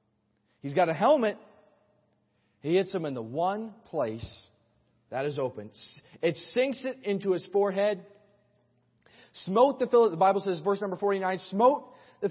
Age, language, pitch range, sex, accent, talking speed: 40-59, English, 150-225 Hz, male, American, 150 wpm